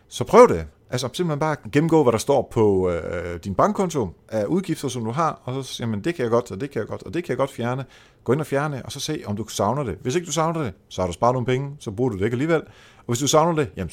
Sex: male